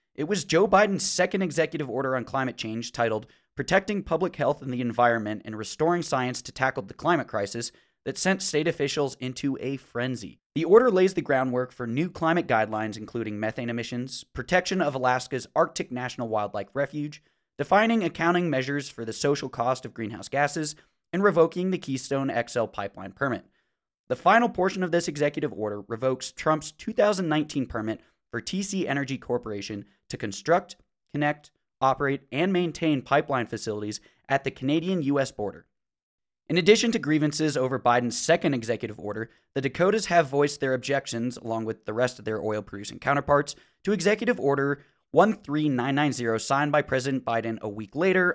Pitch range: 120-160 Hz